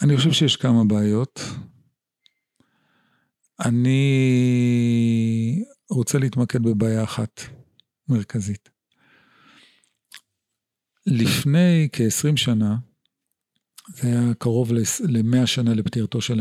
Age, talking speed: 50-69, 75 wpm